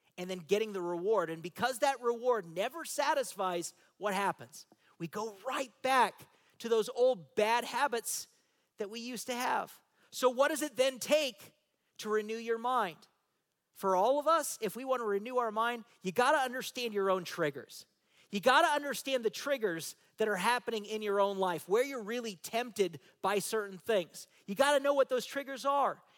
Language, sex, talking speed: English, male, 190 wpm